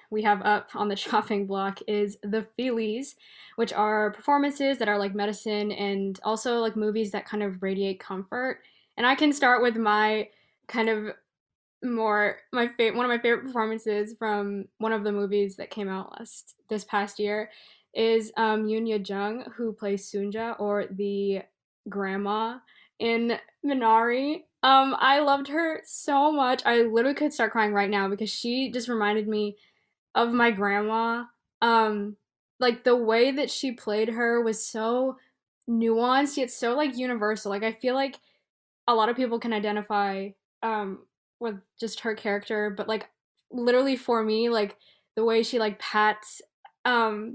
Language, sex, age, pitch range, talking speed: English, female, 10-29, 210-240 Hz, 165 wpm